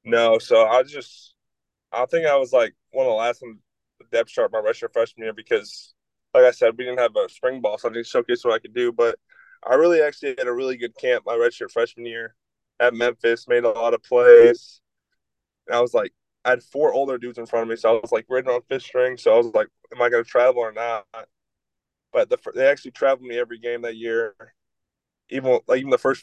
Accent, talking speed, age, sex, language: American, 240 wpm, 20-39, male, English